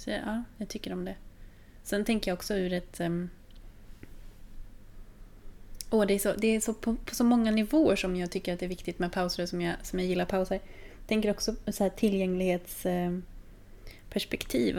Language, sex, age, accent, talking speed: Swedish, female, 20-39, native, 185 wpm